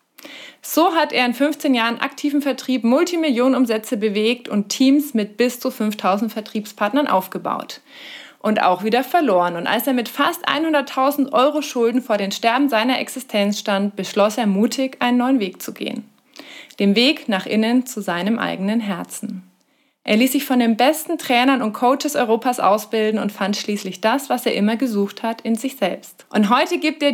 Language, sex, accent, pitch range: German, female, German, 215-270 Hz